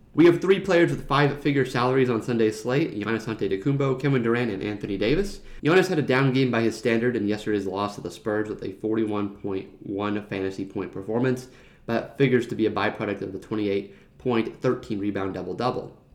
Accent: American